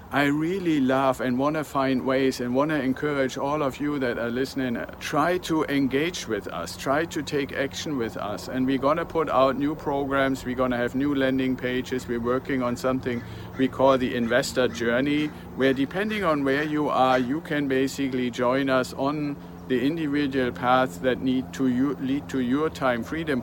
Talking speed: 185 wpm